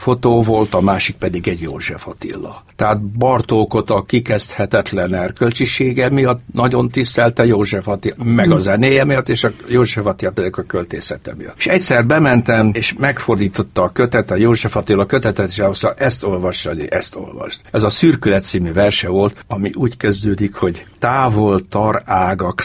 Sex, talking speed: male, 155 wpm